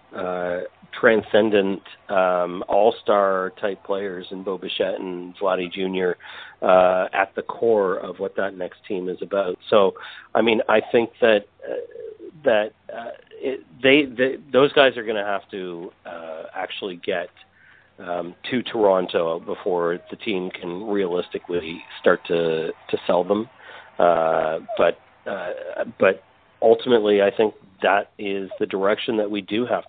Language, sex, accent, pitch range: English, male, American, 90-125 Hz